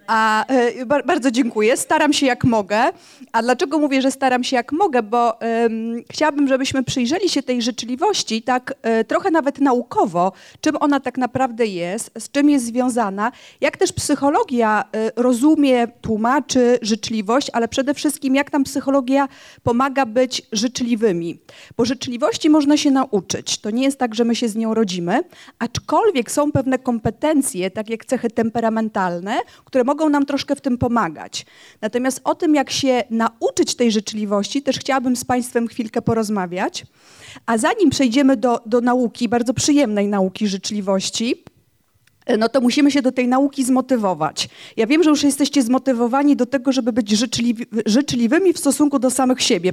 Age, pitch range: 40-59, 230-275 Hz